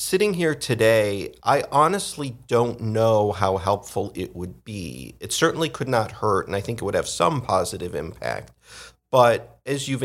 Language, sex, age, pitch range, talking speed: English, male, 50-69, 95-120 Hz, 175 wpm